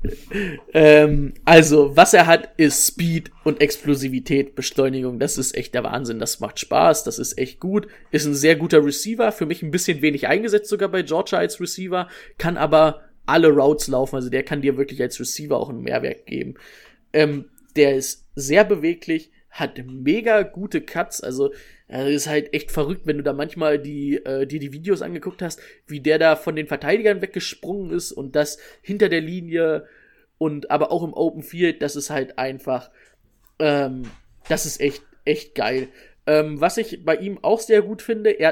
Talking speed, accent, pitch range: 185 wpm, German, 145-180 Hz